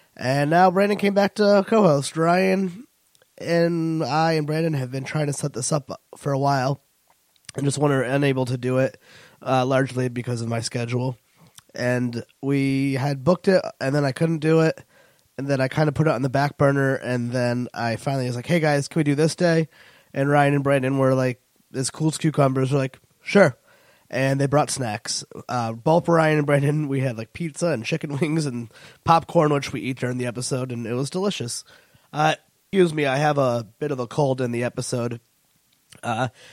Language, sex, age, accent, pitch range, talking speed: English, male, 20-39, American, 125-160 Hz, 205 wpm